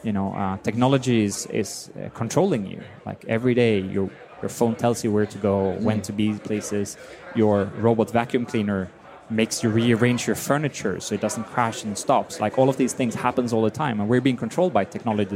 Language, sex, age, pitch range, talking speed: Danish, male, 20-39, 105-125 Hz, 205 wpm